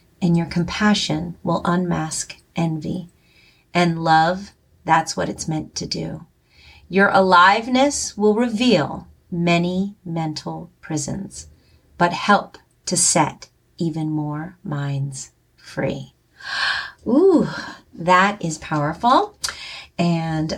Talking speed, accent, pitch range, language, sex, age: 100 wpm, American, 155-200 Hz, English, female, 30-49